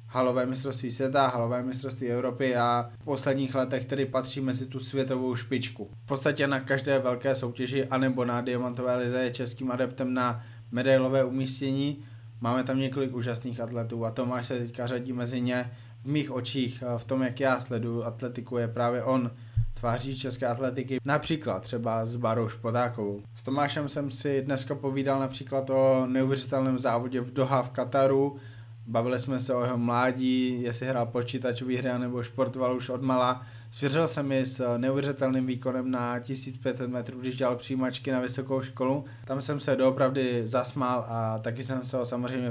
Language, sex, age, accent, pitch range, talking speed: Czech, male, 20-39, native, 120-130 Hz, 170 wpm